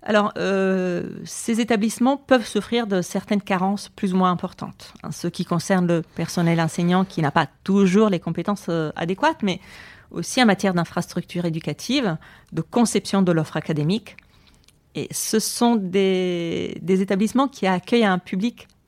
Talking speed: 155 wpm